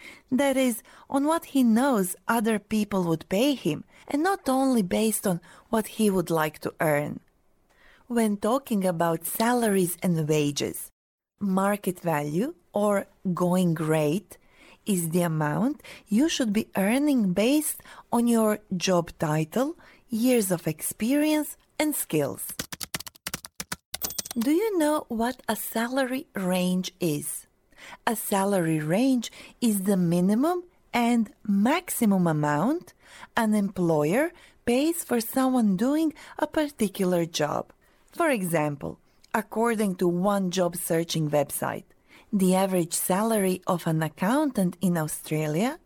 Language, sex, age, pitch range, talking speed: Amharic, female, 30-49, 180-255 Hz, 120 wpm